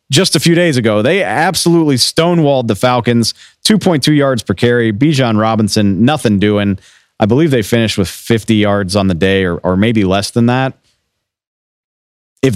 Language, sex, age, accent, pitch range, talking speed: English, male, 40-59, American, 105-135 Hz, 165 wpm